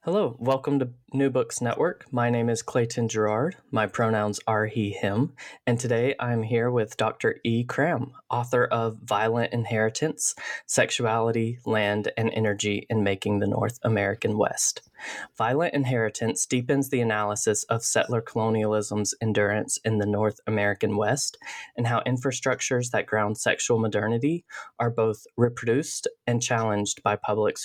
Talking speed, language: 145 wpm, English